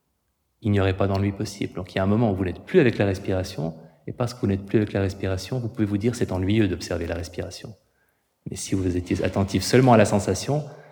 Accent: French